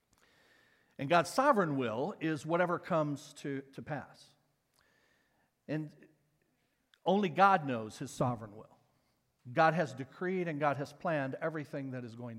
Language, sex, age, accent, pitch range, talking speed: English, male, 50-69, American, 135-180 Hz, 135 wpm